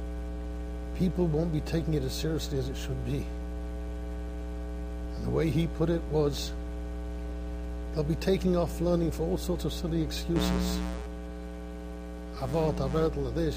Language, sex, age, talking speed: English, male, 60-79, 145 wpm